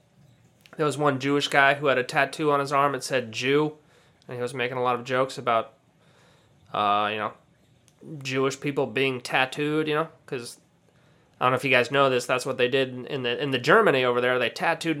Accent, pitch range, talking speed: American, 130-160 Hz, 220 wpm